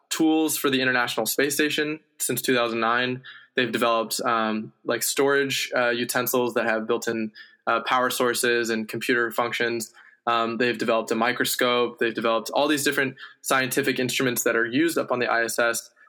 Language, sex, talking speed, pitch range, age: English, male, 160 wpm, 120-135 Hz, 20-39